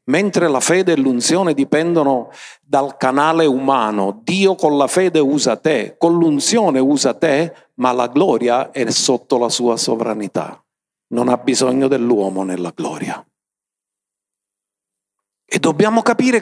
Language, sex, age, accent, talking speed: Italian, male, 50-69, native, 130 wpm